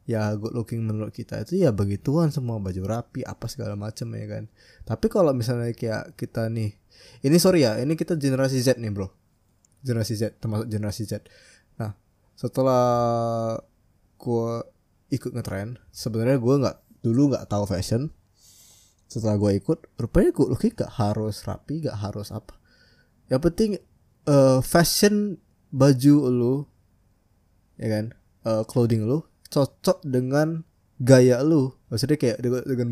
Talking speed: 140 wpm